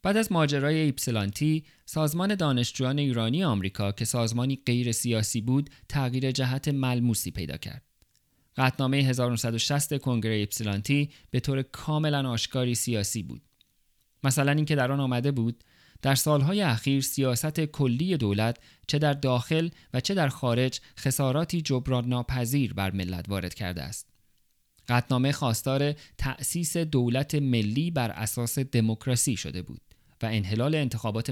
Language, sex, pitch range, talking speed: Persian, male, 115-145 Hz, 130 wpm